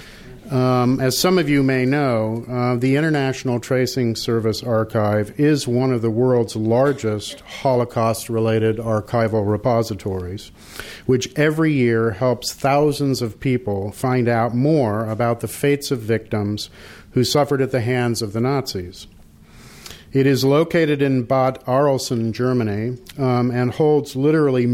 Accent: American